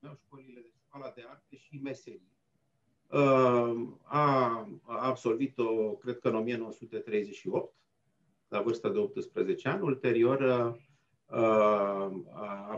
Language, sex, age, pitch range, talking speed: Romanian, male, 50-69, 110-145 Hz, 105 wpm